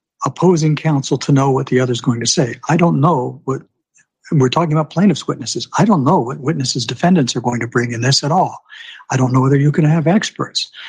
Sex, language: male, English